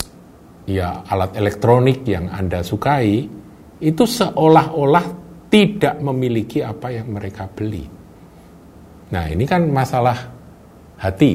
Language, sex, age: Indonesian, male, 50-69